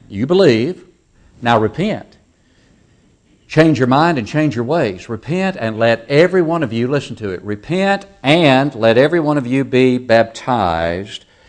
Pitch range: 100-150 Hz